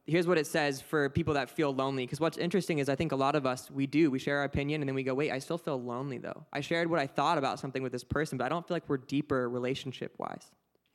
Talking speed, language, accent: 290 wpm, English, American